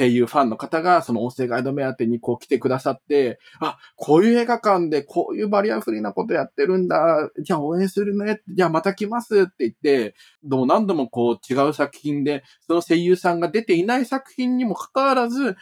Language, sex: Japanese, male